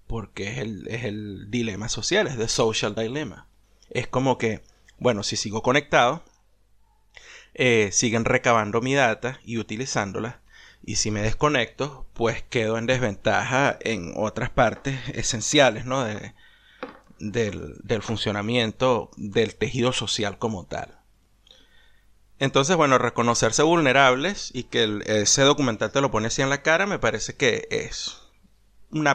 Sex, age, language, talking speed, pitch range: male, 30-49, Spanish, 140 wpm, 110-140 Hz